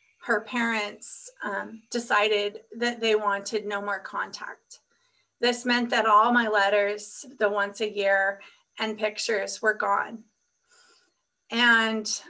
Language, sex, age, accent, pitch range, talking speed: English, female, 30-49, American, 210-245 Hz, 120 wpm